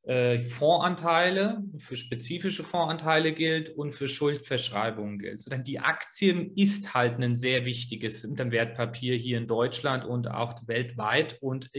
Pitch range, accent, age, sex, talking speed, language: 125-160 Hz, German, 30-49, male, 120 wpm, German